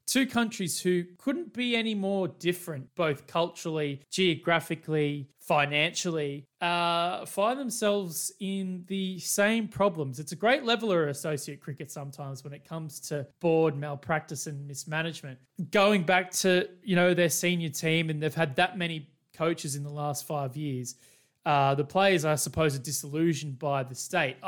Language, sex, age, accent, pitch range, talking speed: English, male, 20-39, Australian, 145-180 Hz, 155 wpm